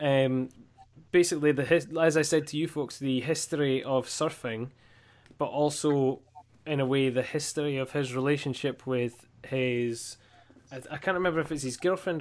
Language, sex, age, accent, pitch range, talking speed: English, male, 10-29, British, 120-145 Hz, 155 wpm